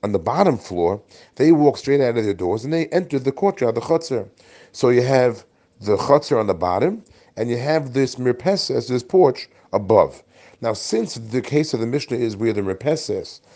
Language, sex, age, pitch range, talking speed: English, male, 40-59, 115-155 Hz, 200 wpm